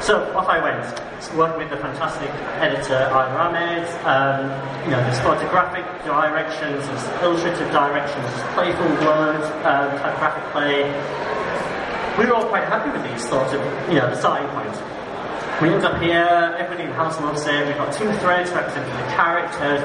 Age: 30-49